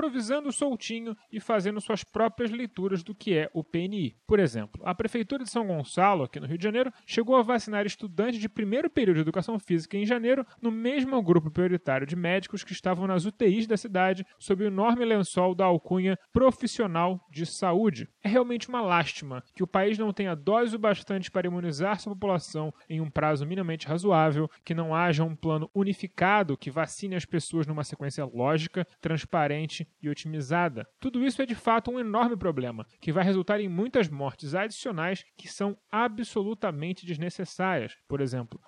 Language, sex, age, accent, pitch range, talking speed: Portuguese, male, 30-49, Brazilian, 165-225 Hz, 180 wpm